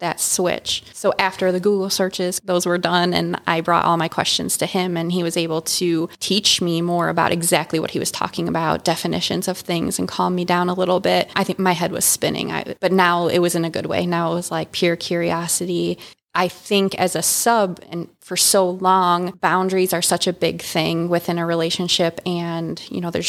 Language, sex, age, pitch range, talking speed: English, female, 20-39, 175-190 Hz, 220 wpm